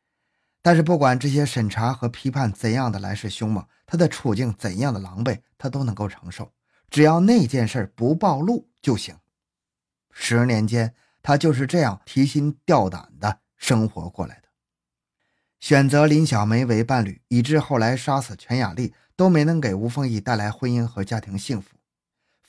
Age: 20-39